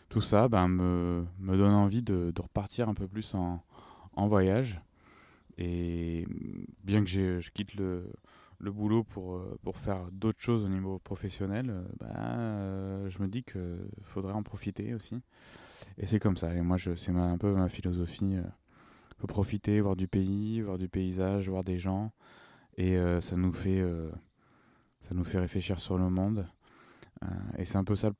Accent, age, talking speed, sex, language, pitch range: French, 20-39, 170 wpm, male, French, 90-110 Hz